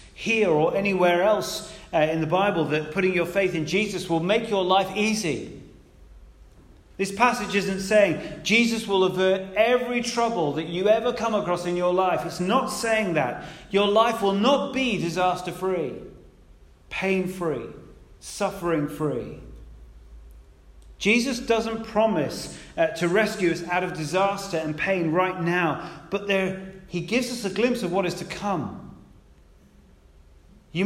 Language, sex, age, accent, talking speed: English, male, 40-59, British, 150 wpm